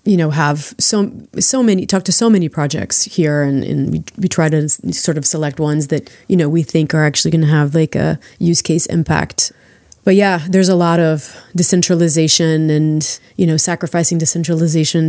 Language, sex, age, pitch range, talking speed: English, female, 30-49, 155-180 Hz, 195 wpm